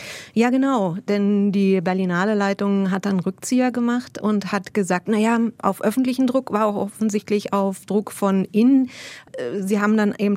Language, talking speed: German, 155 wpm